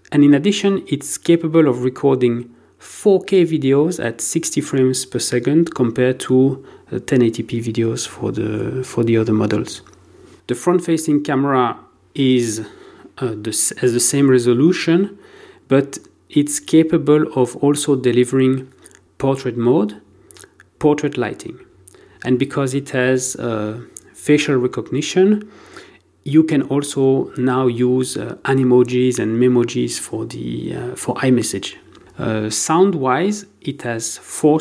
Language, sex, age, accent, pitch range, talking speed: English, male, 40-59, French, 120-145 Hz, 120 wpm